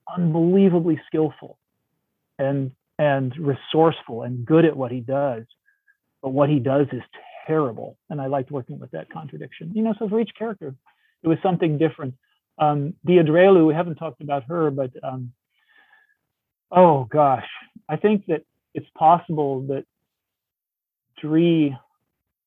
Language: English